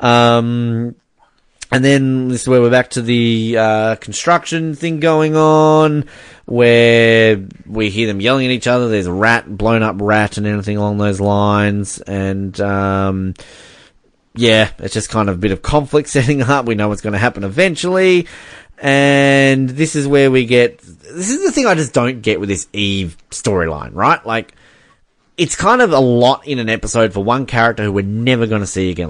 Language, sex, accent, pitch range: English, male, Australian, 110-150 Hz